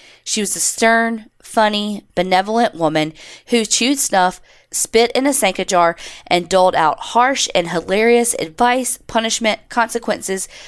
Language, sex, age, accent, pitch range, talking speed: English, female, 20-39, American, 175-235 Hz, 140 wpm